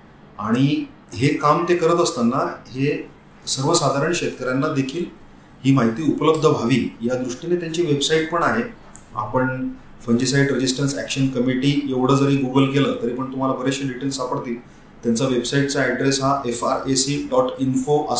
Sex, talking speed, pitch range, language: male, 95 wpm, 120-145 Hz, Hindi